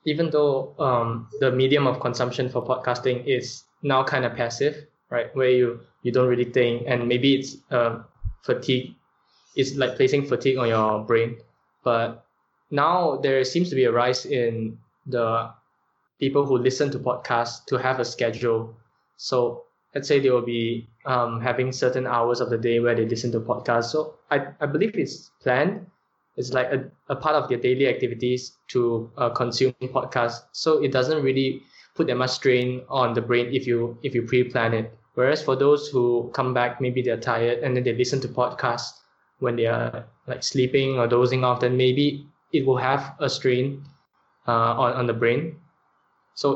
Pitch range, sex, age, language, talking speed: 120-135 Hz, male, 10-29, English, 185 wpm